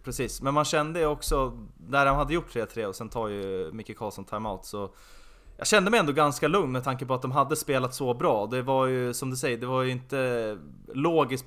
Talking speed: 235 wpm